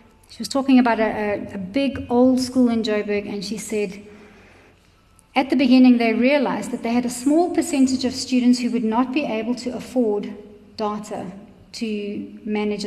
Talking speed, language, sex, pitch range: 175 wpm, English, female, 190-245 Hz